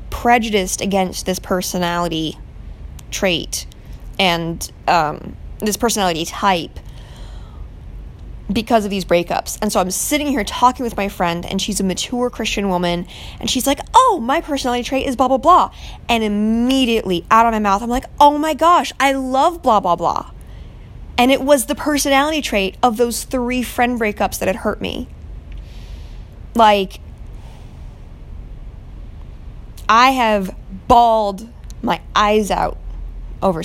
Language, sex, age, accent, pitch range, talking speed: English, female, 20-39, American, 180-245 Hz, 140 wpm